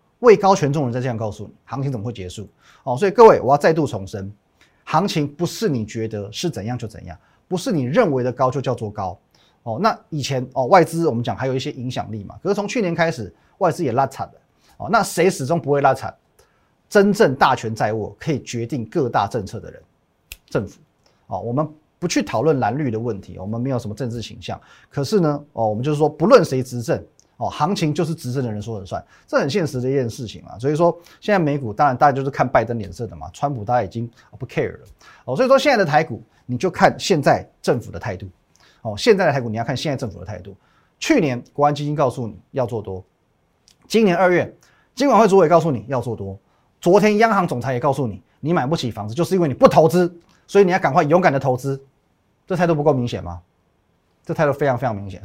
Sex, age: male, 30-49